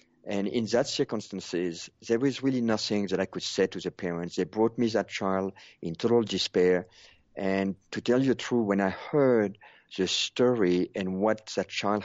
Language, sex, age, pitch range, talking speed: English, male, 50-69, 90-110 Hz, 190 wpm